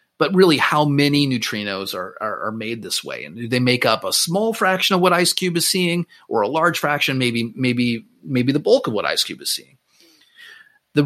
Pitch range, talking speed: 120-170 Hz, 220 wpm